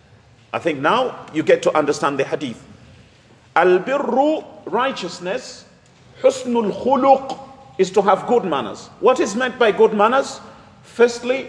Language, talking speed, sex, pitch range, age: English, 135 wpm, male, 185-250 Hz, 40-59